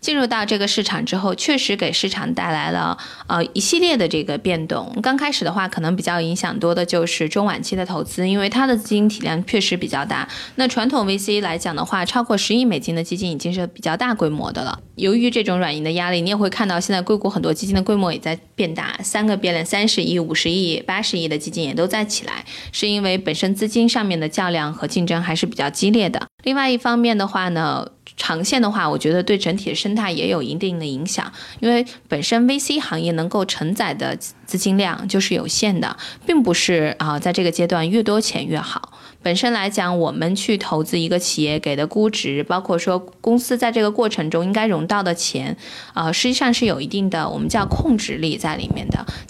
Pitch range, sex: 175-220 Hz, female